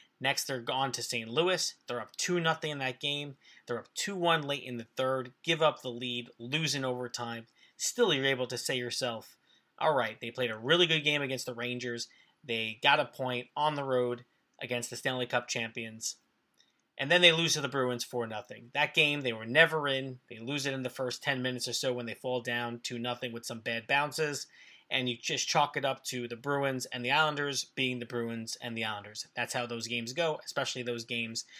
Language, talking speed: English, 220 wpm